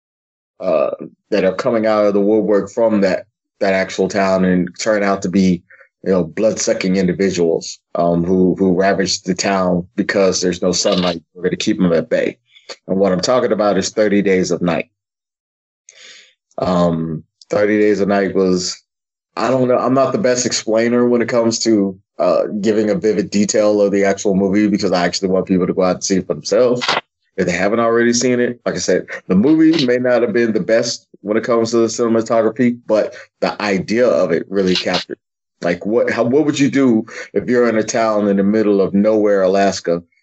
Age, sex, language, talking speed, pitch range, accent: 30-49, male, English, 205 wpm, 95-110 Hz, American